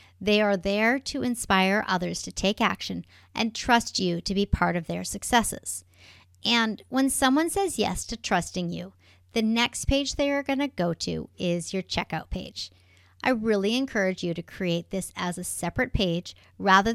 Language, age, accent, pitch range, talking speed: English, 40-59, American, 170-230 Hz, 175 wpm